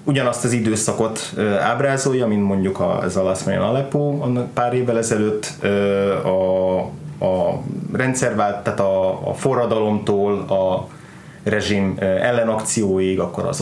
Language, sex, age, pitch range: Hungarian, male, 20-39, 100-135 Hz